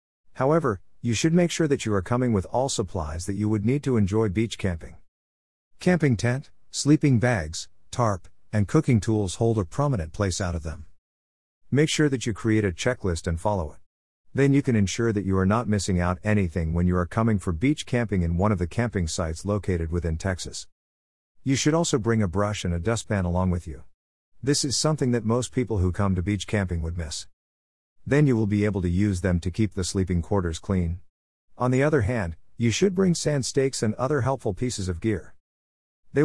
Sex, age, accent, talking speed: male, 50-69, American, 210 wpm